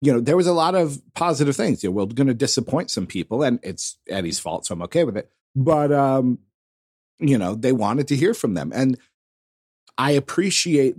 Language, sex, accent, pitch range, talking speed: English, male, American, 100-140 Hz, 215 wpm